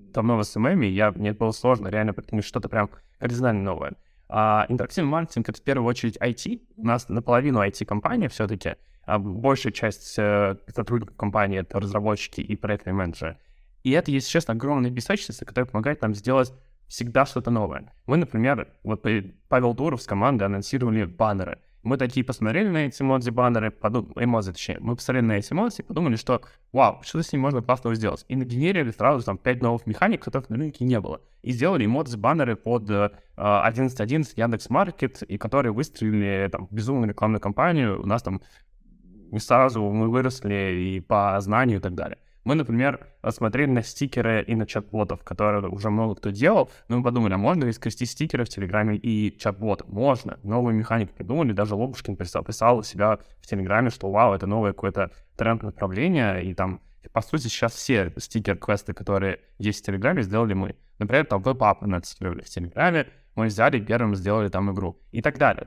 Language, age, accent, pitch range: Russian, 20-39, native, 100-130 Hz